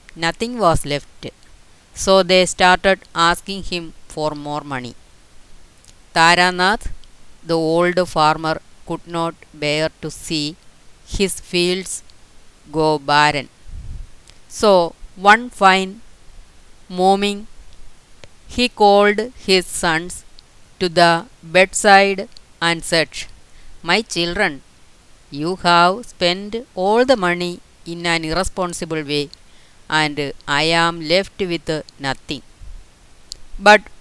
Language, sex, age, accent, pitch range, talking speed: Malayalam, female, 20-39, native, 155-195 Hz, 100 wpm